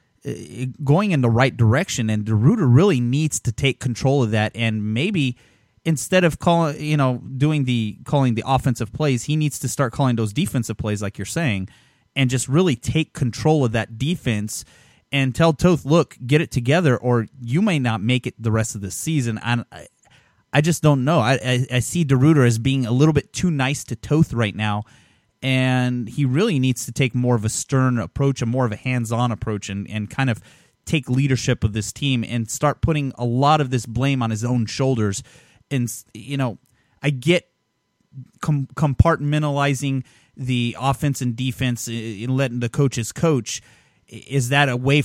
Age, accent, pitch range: 30-49, American, 115-145 Hz